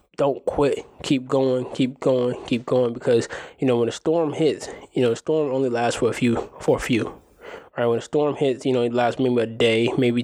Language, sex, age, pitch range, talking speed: English, male, 20-39, 120-140 Hz, 235 wpm